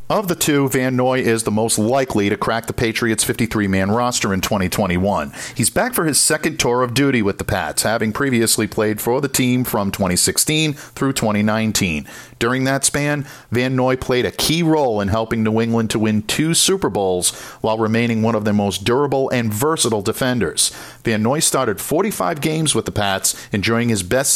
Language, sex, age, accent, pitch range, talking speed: English, male, 50-69, American, 110-135 Hz, 190 wpm